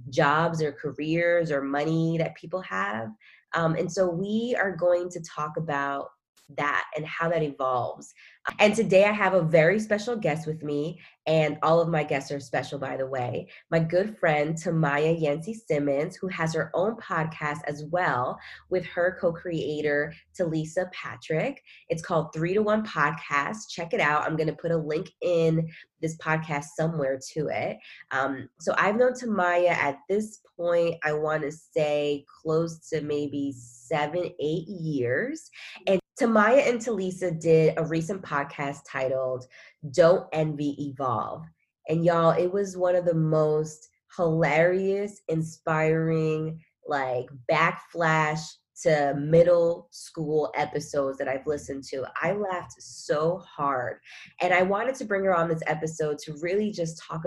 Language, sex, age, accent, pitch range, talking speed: English, female, 20-39, American, 145-175 Hz, 155 wpm